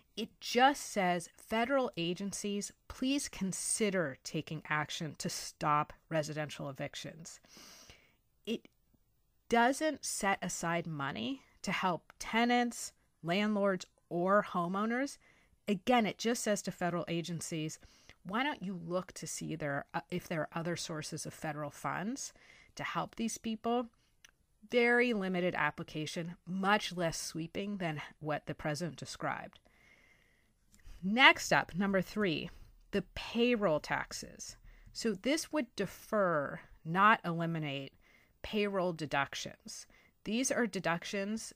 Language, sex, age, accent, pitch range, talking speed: English, female, 30-49, American, 155-215 Hz, 115 wpm